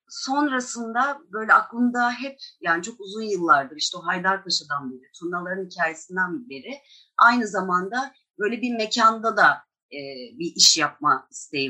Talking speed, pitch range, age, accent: 135 wpm, 175-245 Hz, 30-49, native